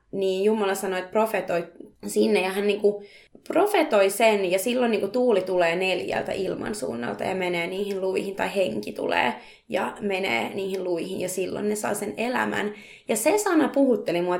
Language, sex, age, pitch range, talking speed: Finnish, female, 20-39, 190-250 Hz, 165 wpm